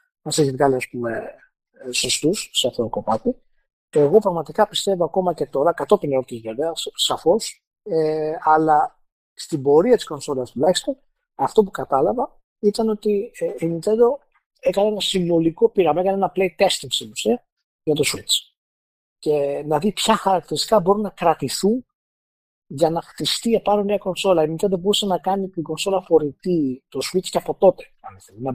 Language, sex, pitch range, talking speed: Greek, male, 155-210 Hz, 165 wpm